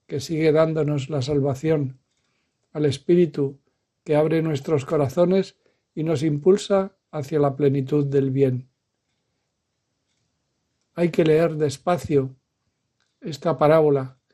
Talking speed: 105 wpm